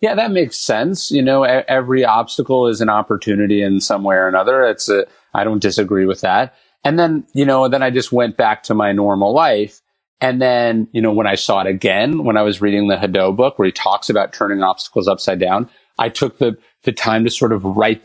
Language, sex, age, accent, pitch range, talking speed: English, male, 30-49, American, 105-130 Hz, 230 wpm